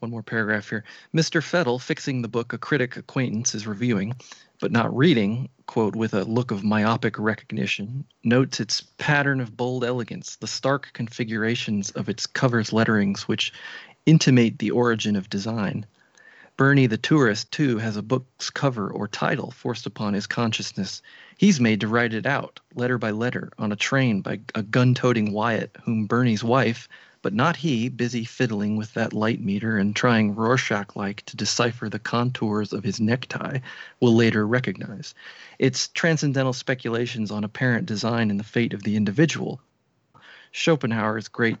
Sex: male